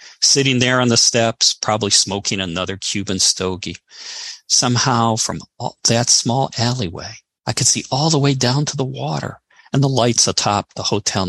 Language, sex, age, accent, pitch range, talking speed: English, male, 50-69, American, 100-130 Hz, 165 wpm